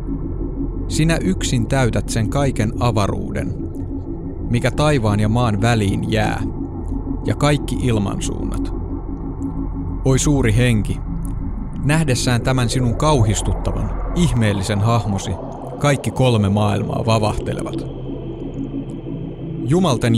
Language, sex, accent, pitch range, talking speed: Finnish, male, native, 105-135 Hz, 85 wpm